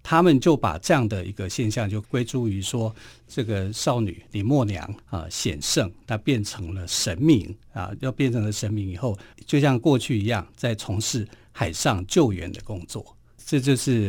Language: Chinese